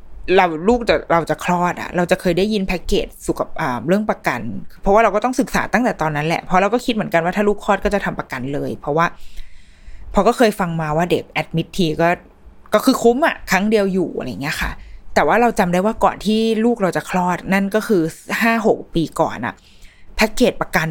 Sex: female